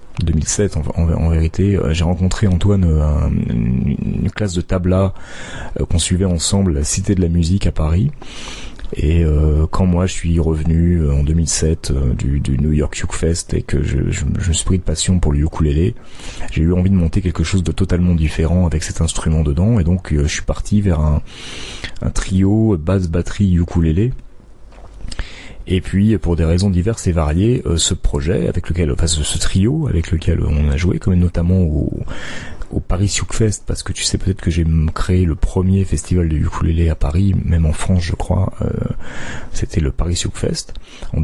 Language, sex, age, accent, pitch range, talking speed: French, male, 30-49, French, 80-95 Hz, 200 wpm